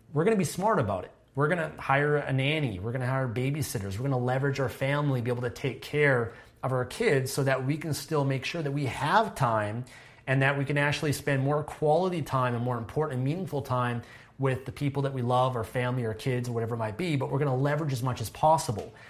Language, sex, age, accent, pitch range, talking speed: English, male, 30-49, American, 125-150 Hz, 260 wpm